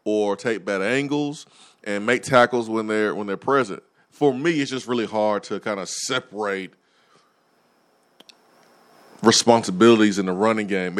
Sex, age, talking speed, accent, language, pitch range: male, 20-39, 145 wpm, American, English, 95-125 Hz